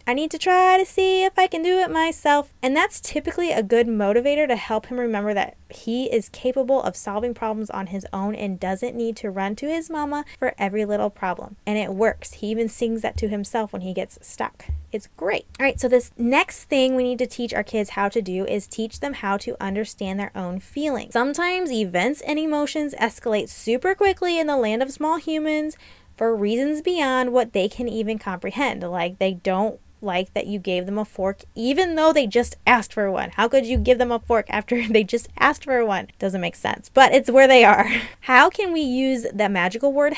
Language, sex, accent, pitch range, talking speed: English, female, American, 210-285 Hz, 225 wpm